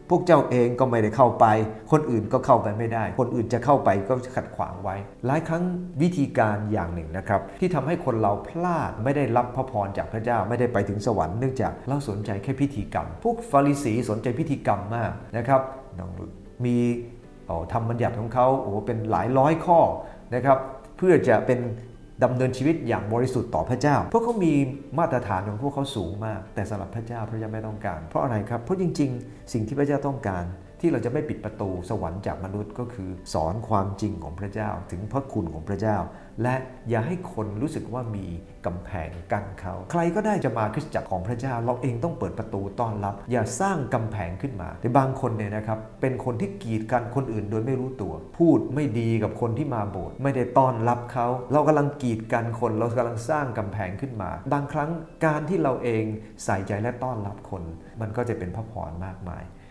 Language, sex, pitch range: English, male, 105-135 Hz